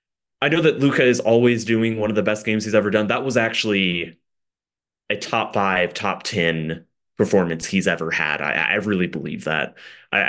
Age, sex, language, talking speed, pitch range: 30-49, male, English, 190 wpm, 95-120 Hz